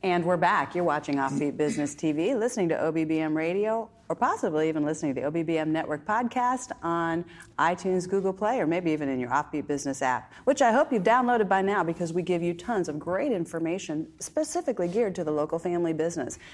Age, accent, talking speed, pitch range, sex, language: 40-59, American, 200 wpm, 165-235 Hz, female, English